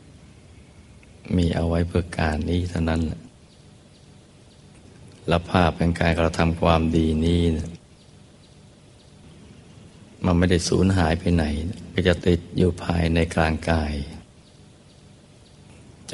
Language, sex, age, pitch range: Thai, male, 60-79, 80-90 Hz